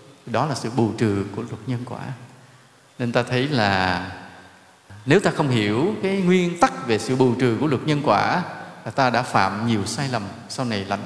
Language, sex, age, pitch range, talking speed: Vietnamese, male, 20-39, 115-160 Hz, 205 wpm